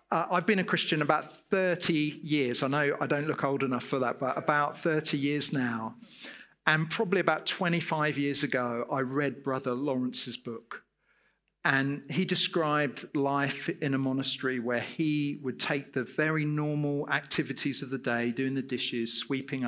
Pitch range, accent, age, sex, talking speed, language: 135-175 Hz, British, 40-59, male, 170 wpm, English